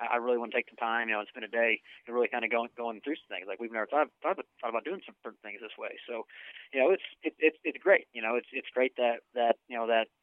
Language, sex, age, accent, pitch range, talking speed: English, male, 20-39, American, 110-125 Hz, 315 wpm